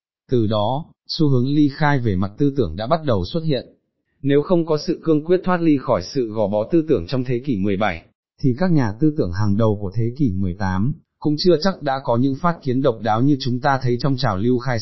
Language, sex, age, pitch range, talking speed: Vietnamese, male, 20-39, 110-145 Hz, 250 wpm